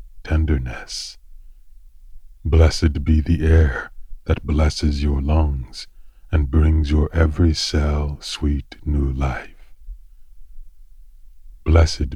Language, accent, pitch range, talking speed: English, American, 65-80 Hz, 90 wpm